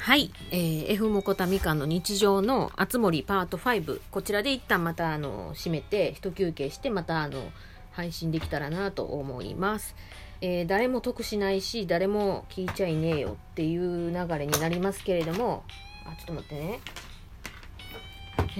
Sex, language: female, Japanese